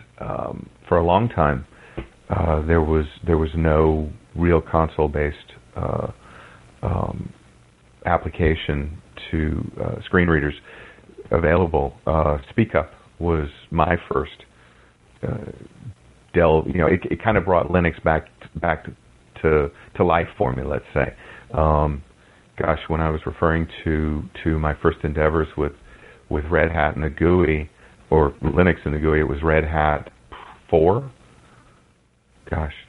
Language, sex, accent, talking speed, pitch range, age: English, male, American, 135 wpm, 75-90 Hz, 40-59